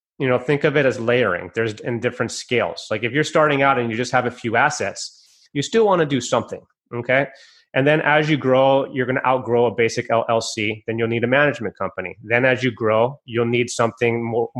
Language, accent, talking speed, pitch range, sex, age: English, American, 230 wpm, 115-140 Hz, male, 30-49